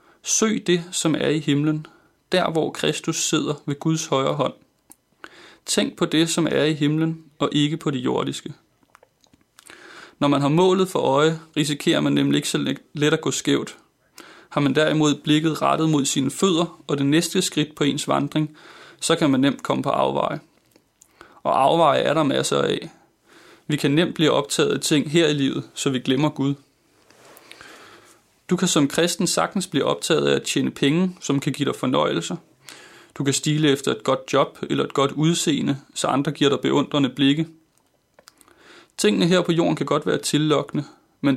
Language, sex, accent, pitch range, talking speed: Danish, male, native, 140-165 Hz, 180 wpm